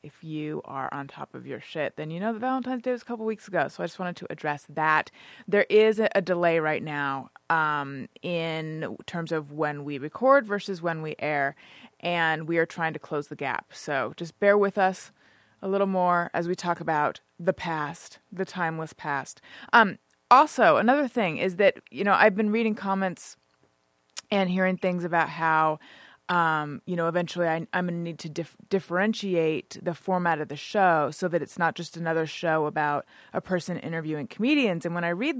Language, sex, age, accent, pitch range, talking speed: English, female, 20-39, American, 160-195 Hz, 195 wpm